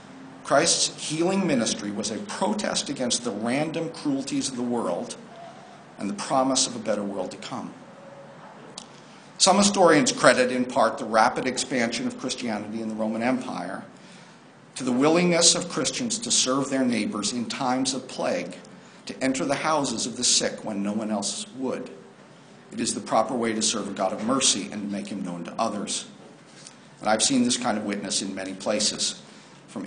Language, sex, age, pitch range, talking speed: English, male, 50-69, 105-145 Hz, 180 wpm